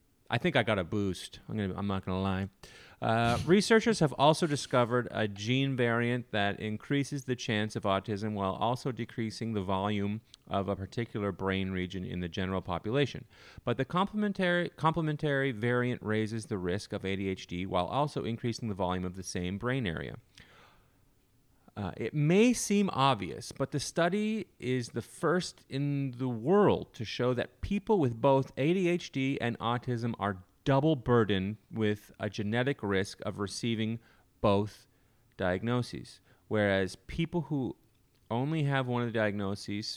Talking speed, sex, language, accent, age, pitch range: 150 wpm, male, English, American, 30-49, 100-135 Hz